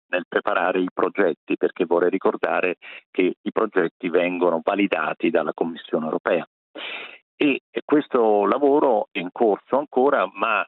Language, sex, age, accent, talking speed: Italian, male, 50-69, native, 130 wpm